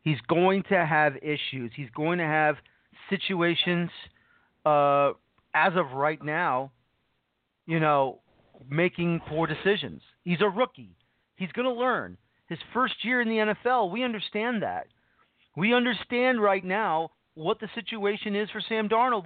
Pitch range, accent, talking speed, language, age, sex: 170-235 Hz, American, 145 wpm, English, 40-59, male